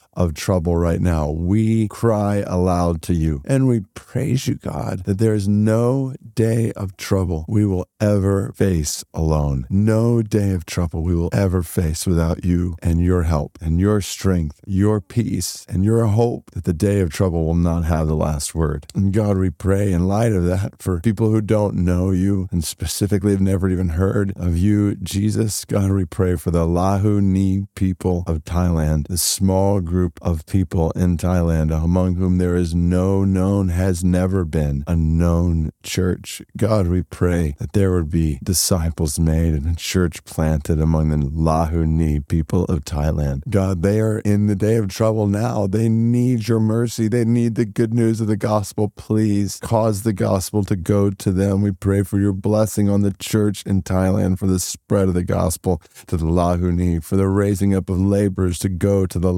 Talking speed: 190 wpm